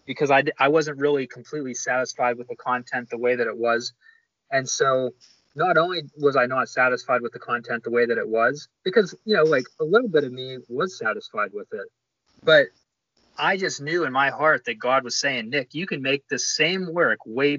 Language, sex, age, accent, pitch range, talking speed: English, male, 20-39, American, 120-150 Hz, 215 wpm